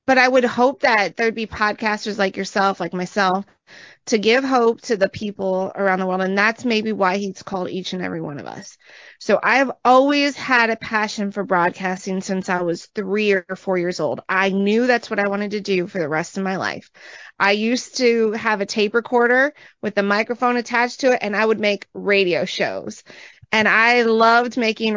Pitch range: 195-235 Hz